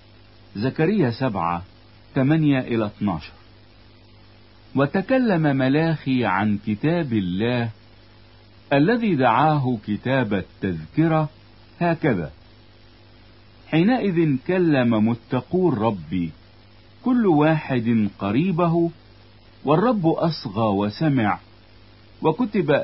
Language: Italian